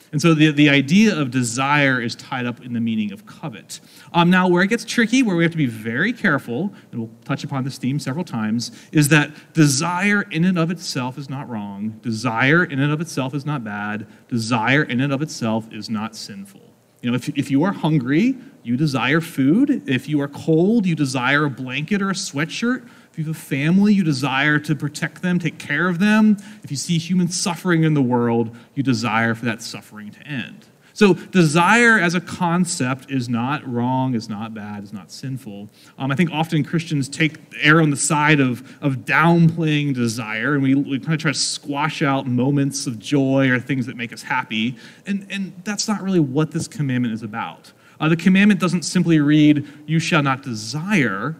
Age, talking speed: 30-49, 210 wpm